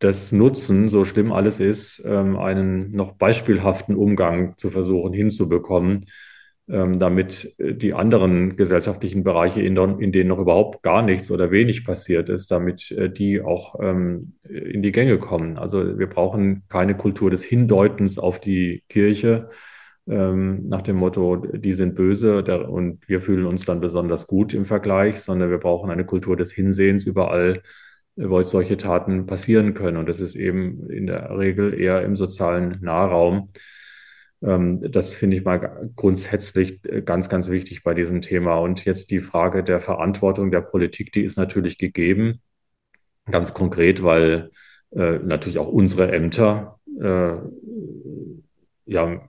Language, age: German, 30-49